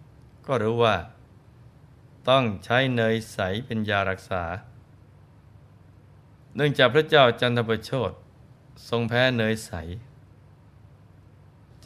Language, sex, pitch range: Thai, male, 110-130 Hz